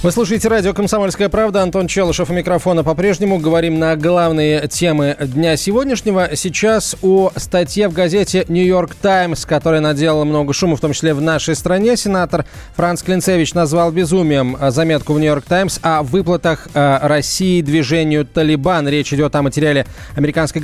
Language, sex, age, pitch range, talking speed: Russian, male, 20-39, 150-180 Hz, 150 wpm